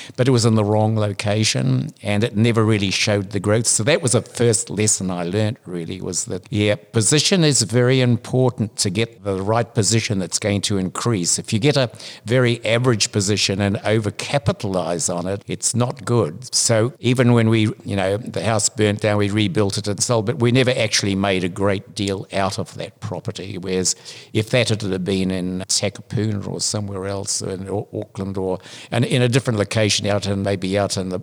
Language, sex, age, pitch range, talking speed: English, male, 60-79, 100-120 Hz, 200 wpm